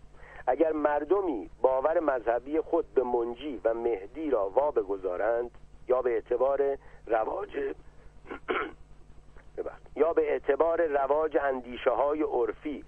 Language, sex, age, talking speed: Persian, male, 50-69, 105 wpm